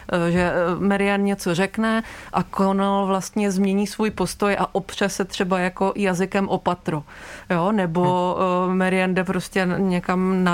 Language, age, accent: Czech, 20-39, native